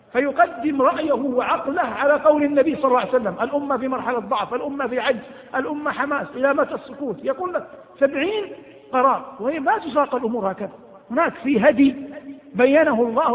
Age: 50-69